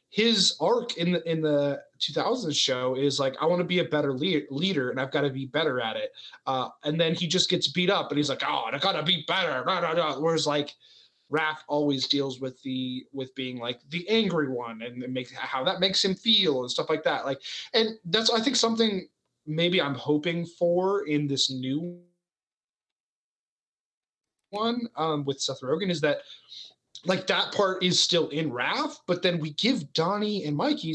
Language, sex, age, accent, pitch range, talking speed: English, male, 20-39, American, 145-185 Hz, 205 wpm